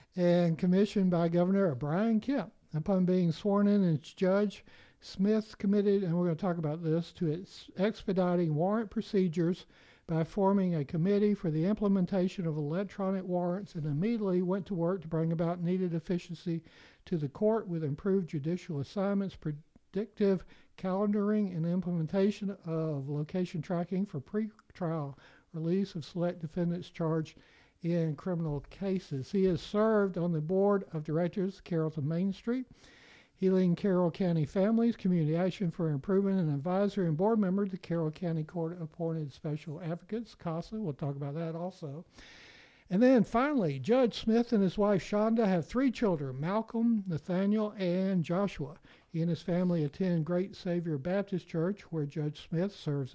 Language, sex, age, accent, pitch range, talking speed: English, male, 60-79, American, 165-200 Hz, 155 wpm